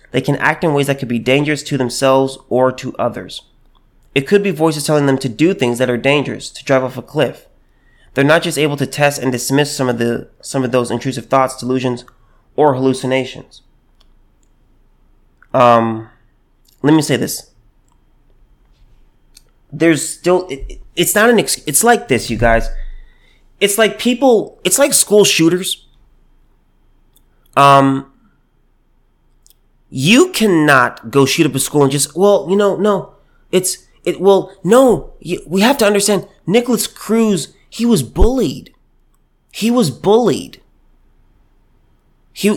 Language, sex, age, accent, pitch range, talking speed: English, male, 30-49, American, 135-190 Hz, 150 wpm